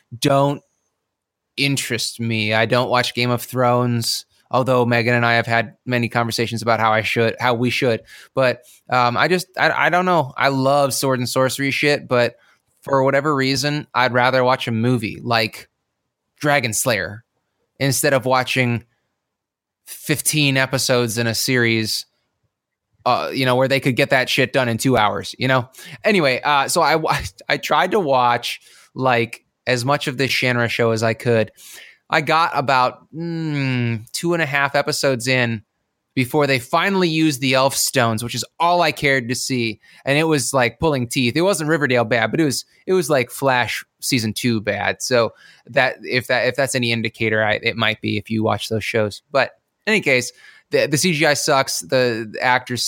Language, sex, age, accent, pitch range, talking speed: English, male, 20-39, American, 115-135 Hz, 185 wpm